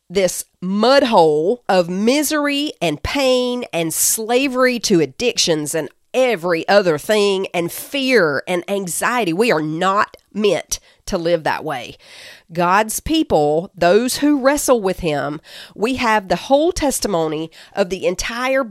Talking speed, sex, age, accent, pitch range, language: 135 wpm, female, 40-59, American, 185-265 Hz, English